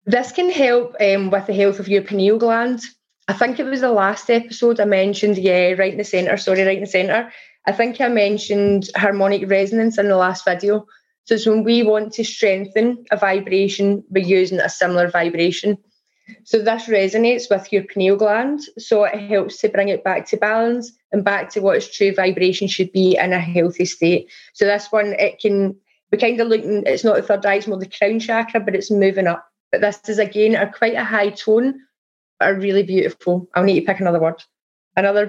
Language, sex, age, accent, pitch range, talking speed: English, female, 20-39, British, 190-220 Hz, 210 wpm